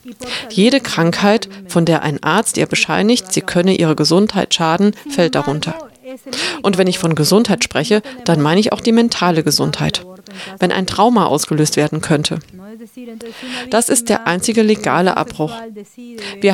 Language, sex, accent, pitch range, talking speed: German, female, German, 165-230 Hz, 150 wpm